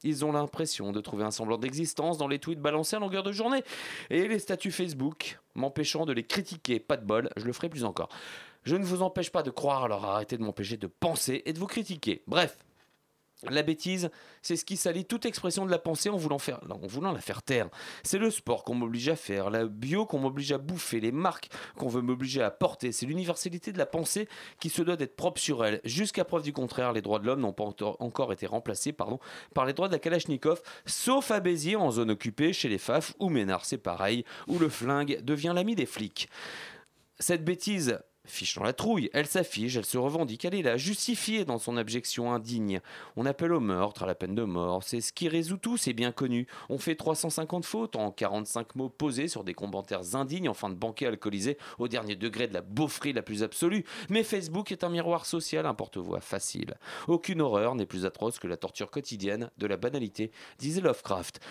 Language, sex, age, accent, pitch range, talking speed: French, male, 30-49, French, 115-175 Hz, 220 wpm